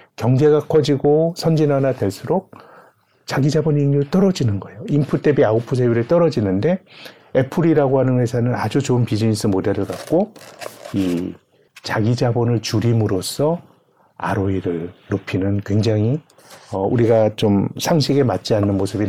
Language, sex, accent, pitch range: Korean, male, native, 100-135 Hz